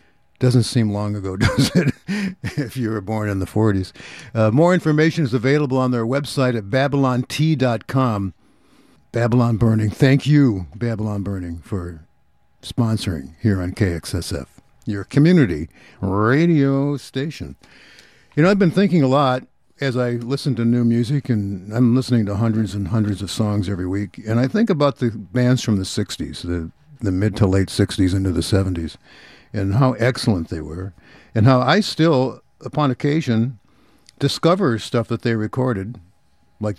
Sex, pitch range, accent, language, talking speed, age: male, 100-130 Hz, American, English, 155 wpm, 60-79